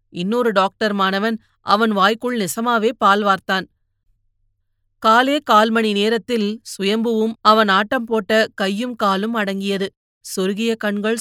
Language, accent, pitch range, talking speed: Tamil, native, 185-230 Hz, 105 wpm